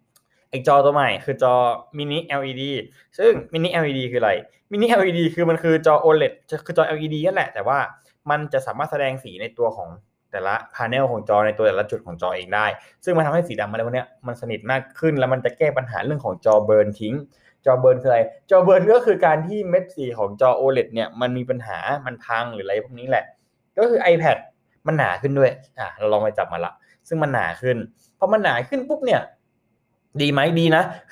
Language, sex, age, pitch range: Thai, male, 20-39, 125-170 Hz